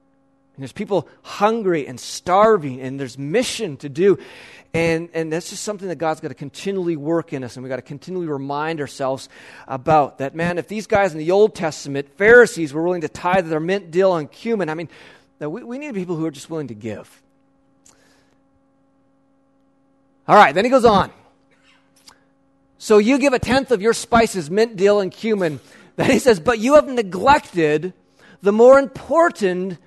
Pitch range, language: 155-215 Hz, English